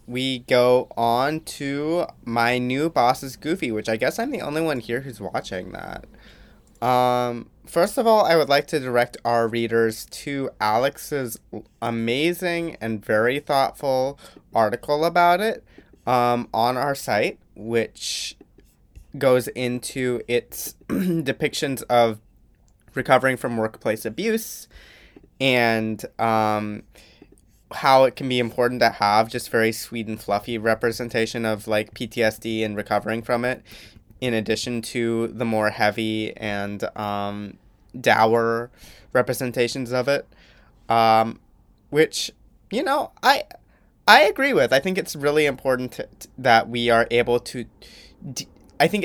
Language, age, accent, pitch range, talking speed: English, 20-39, American, 110-140 Hz, 135 wpm